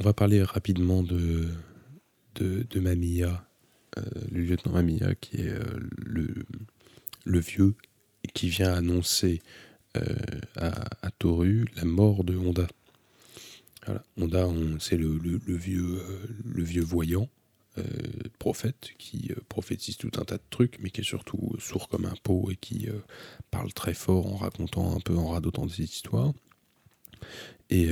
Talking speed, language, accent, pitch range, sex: 160 wpm, French, French, 90-115 Hz, male